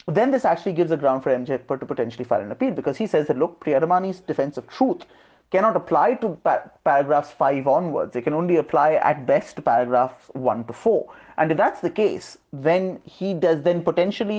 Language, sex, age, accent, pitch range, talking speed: English, male, 30-49, Indian, 135-175 Hz, 205 wpm